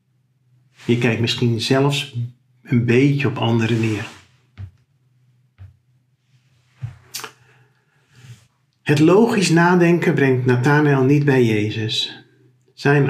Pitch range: 120-140 Hz